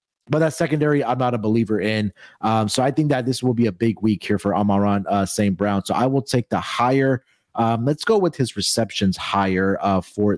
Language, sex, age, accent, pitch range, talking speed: English, male, 30-49, American, 100-145 Hz, 230 wpm